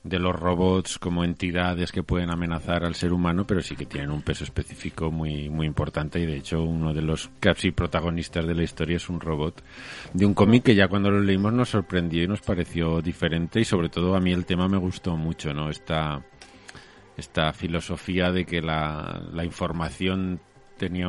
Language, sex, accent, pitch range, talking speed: Spanish, male, Spanish, 80-100 Hz, 195 wpm